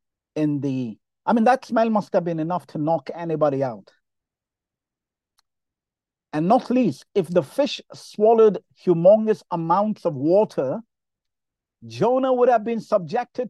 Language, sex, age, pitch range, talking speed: English, male, 50-69, 145-200 Hz, 135 wpm